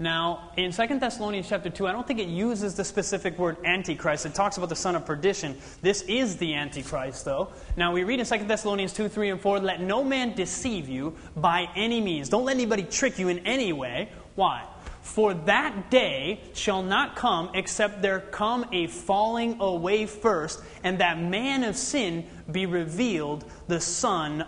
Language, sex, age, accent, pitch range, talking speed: English, male, 30-49, American, 175-235 Hz, 185 wpm